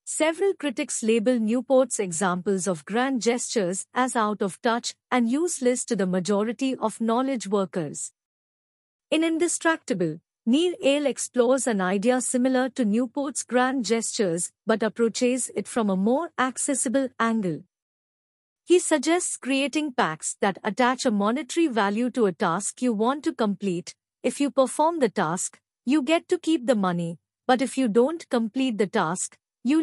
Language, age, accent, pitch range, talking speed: Hindi, 50-69, native, 210-270 Hz, 150 wpm